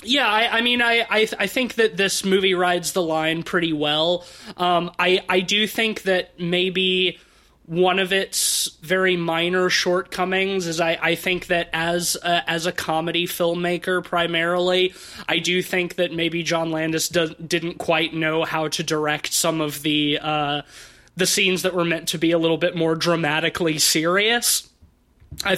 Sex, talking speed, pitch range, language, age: male, 175 wpm, 155-180 Hz, English, 20-39